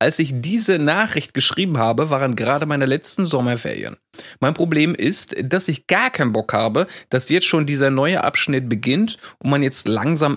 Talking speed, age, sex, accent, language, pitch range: 180 wpm, 30-49, male, German, German, 115-155 Hz